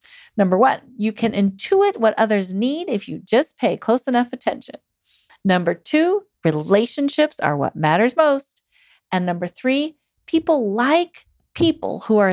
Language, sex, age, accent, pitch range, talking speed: English, female, 40-59, American, 195-275 Hz, 145 wpm